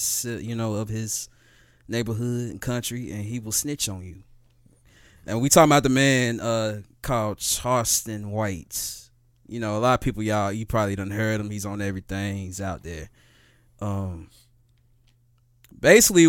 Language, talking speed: English, 160 wpm